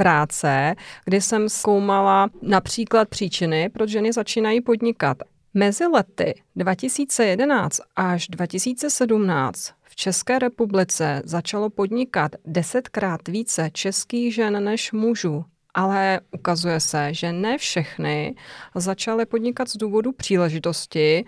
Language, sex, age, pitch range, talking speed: Czech, female, 30-49, 180-220 Hz, 100 wpm